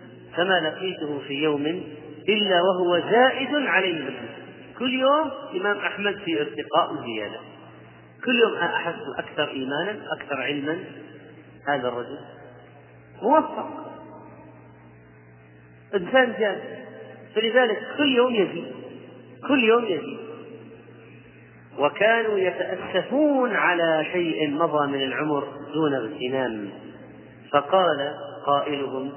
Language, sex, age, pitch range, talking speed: Arabic, male, 40-59, 140-195 Hz, 95 wpm